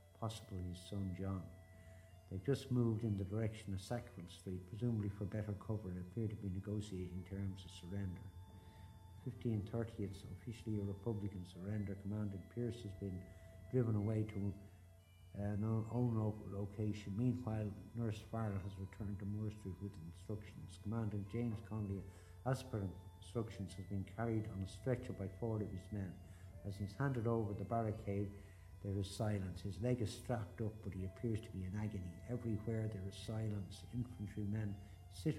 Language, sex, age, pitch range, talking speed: English, male, 60-79, 95-110 Hz, 160 wpm